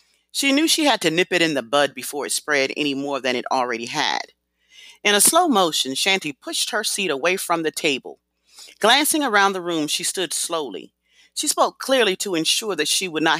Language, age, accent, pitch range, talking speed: English, 40-59, American, 150-225 Hz, 210 wpm